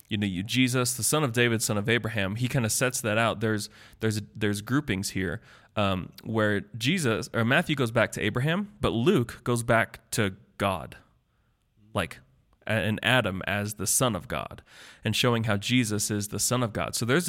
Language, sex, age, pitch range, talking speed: English, male, 20-39, 105-125 Hz, 195 wpm